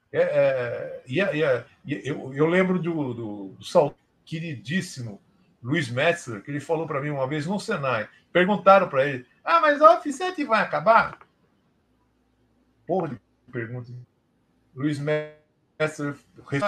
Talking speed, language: 145 wpm, Portuguese